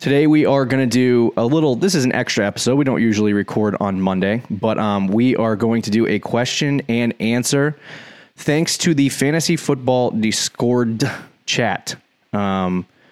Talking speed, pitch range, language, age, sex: 175 wpm, 105-130 Hz, English, 20-39, male